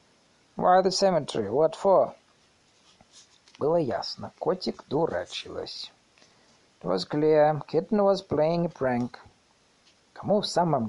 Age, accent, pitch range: 50-69, native, 150-205 Hz